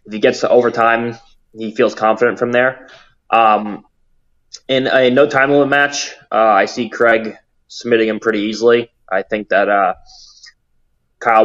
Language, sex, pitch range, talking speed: English, male, 105-120 Hz, 150 wpm